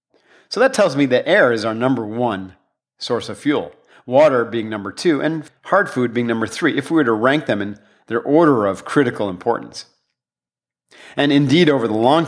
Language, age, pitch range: English, 40-59, 110-145 Hz